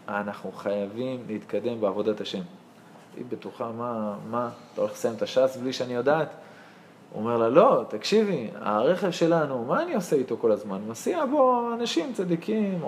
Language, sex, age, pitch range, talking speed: Hebrew, male, 20-39, 145-220 Hz, 160 wpm